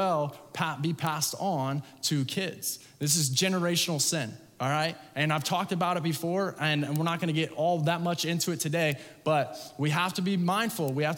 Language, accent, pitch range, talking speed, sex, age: English, American, 135-175 Hz, 195 wpm, male, 20-39